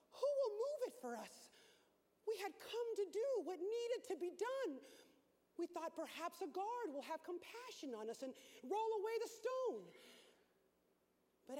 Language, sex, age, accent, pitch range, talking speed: English, female, 40-59, American, 300-435 Hz, 165 wpm